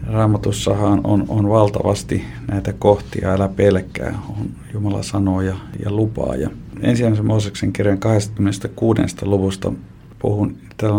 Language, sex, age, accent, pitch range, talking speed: Finnish, male, 50-69, native, 95-110 Hz, 115 wpm